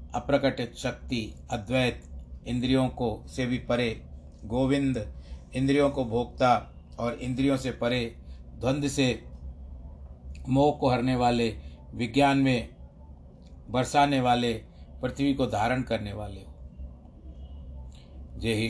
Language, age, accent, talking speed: Hindi, 50-69, native, 100 wpm